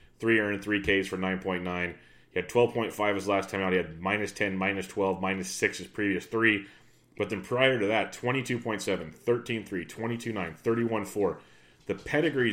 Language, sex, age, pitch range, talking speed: English, male, 30-49, 95-115 Hz, 170 wpm